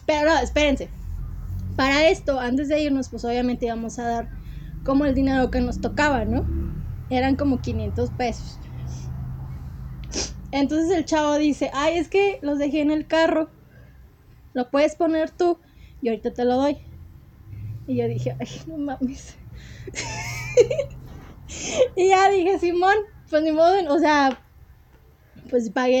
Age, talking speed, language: 20-39, 140 wpm, Spanish